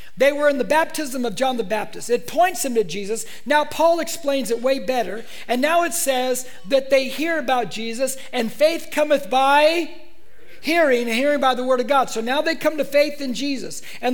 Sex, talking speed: male, 210 wpm